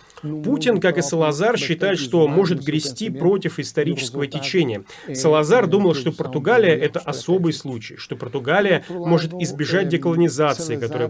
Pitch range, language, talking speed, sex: 135-170 Hz, Russian, 130 wpm, male